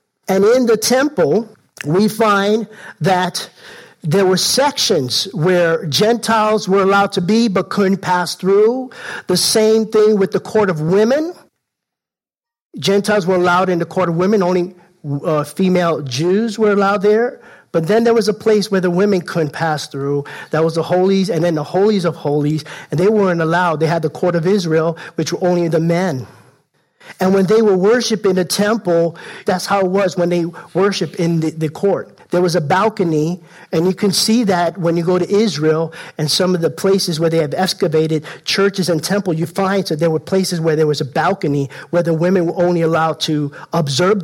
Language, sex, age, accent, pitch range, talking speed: English, male, 50-69, American, 165-205 Hz, 195 wpm